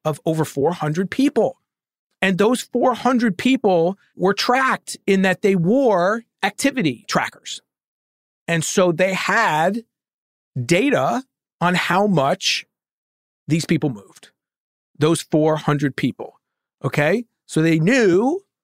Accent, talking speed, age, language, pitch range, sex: American, 110 wpm, 40-59, English, 145-200 Hz, male